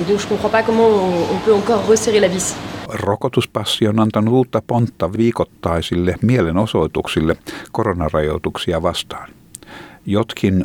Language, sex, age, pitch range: Finnish, male, 60-79, 85-110 Hz